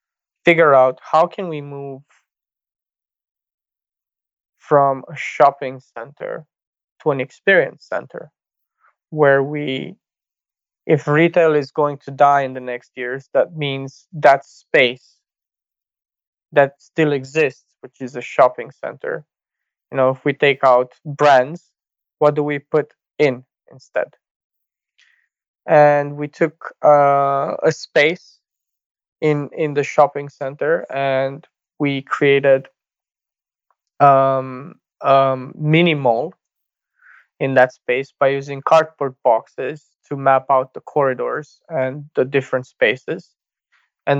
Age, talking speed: 20-39, 115 wpm